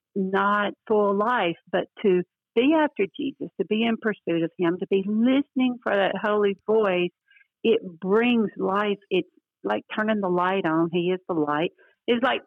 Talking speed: 175 wpm